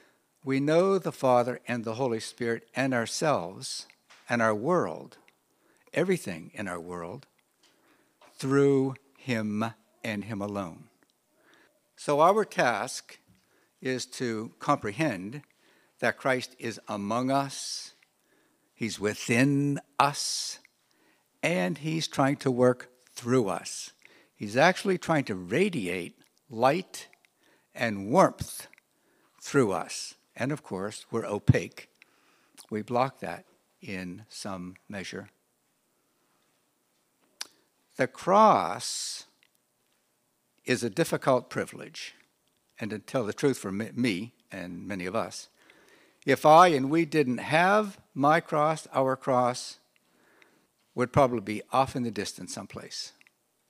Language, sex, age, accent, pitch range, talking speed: English, male, 60-79, American, 115-145 Hz, 110 wpm